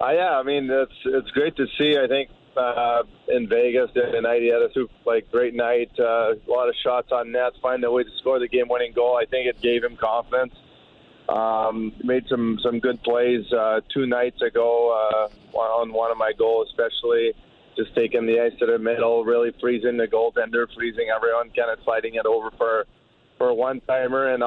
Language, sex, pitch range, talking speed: English, male, 115-130 Hz, 210 wpm